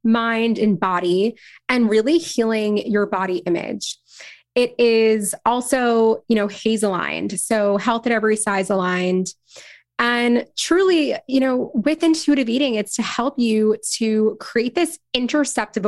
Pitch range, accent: 195-250 Hz, American